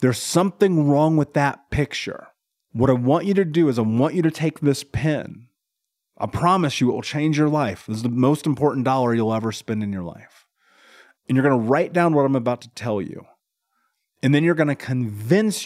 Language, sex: English, male